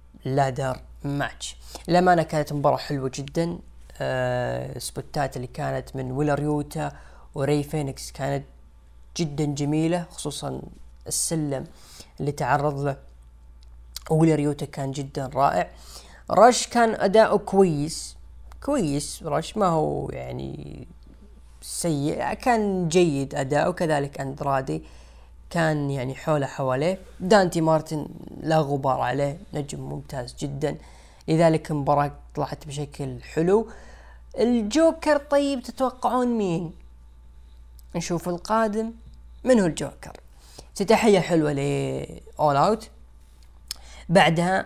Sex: female